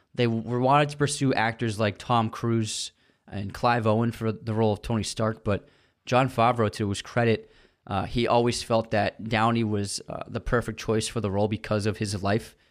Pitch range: 105-120 Hz